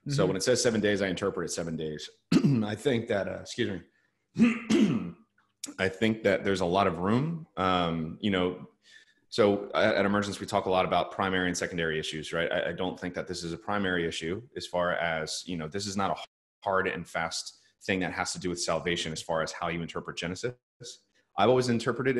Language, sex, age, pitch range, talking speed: English, male, 30-49, 85-105 Hz, 220 wpm